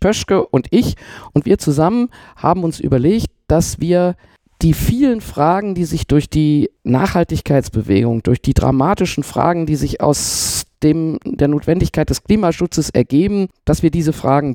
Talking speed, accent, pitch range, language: 145 wpm, German, 130-165 Hz, German